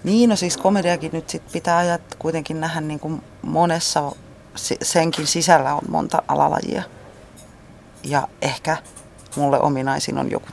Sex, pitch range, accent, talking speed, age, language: female, 130-170 Hz, native, 135 wpm, 30-49, Finnish